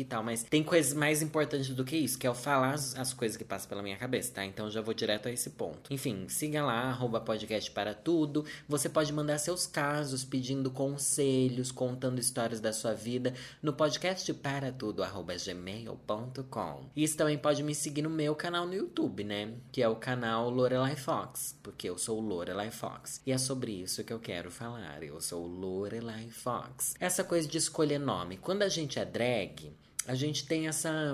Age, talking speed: 20-39, 185 wpm